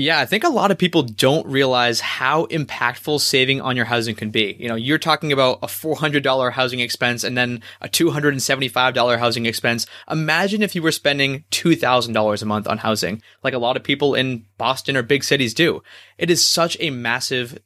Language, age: English, 20-39